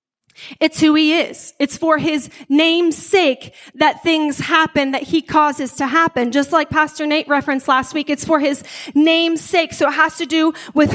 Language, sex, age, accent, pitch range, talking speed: English, female, 30-49, American, 255-320 Hz, 190 wpm